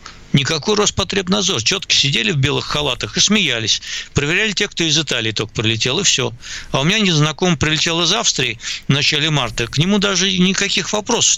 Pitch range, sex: 115-155 Hz, male